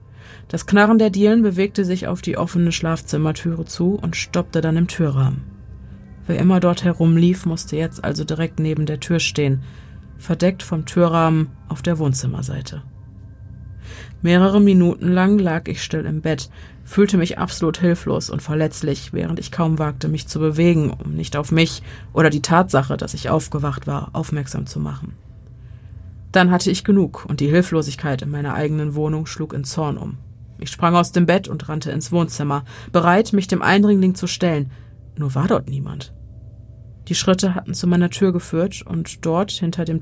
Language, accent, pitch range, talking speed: German, German, 135-175 Hz, 170 wpm